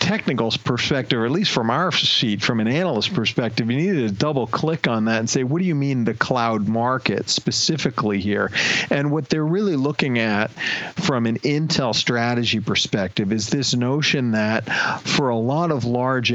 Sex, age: male, 40-59